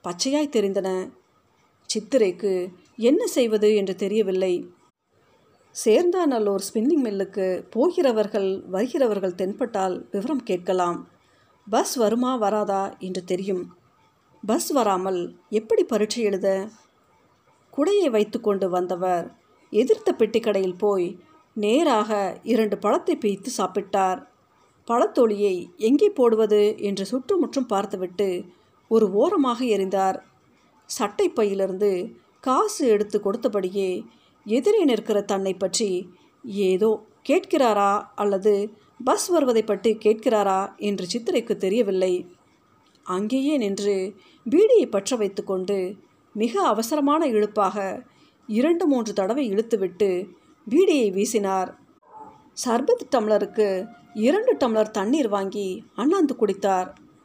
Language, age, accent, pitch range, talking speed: Tamil, 50-69, native, 195-255 Hz, 90 wpm